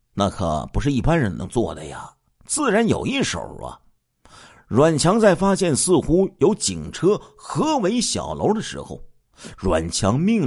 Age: 50-69